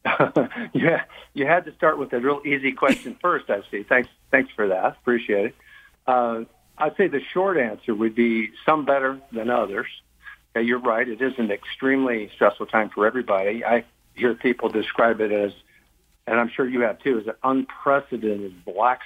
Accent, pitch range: American, 105-130 Hz